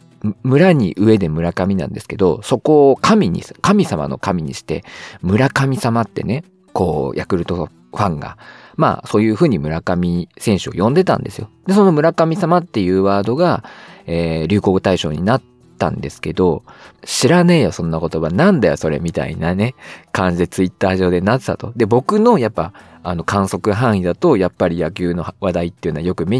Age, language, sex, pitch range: 40-59, Japanese, male, 85-130 Hz